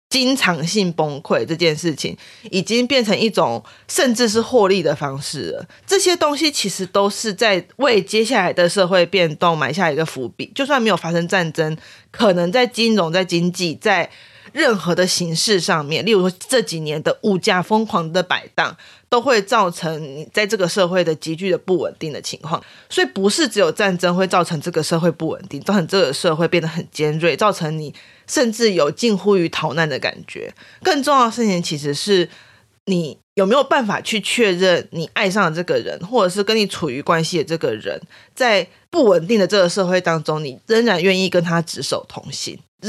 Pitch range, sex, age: 165-215 Hz, female, 20-39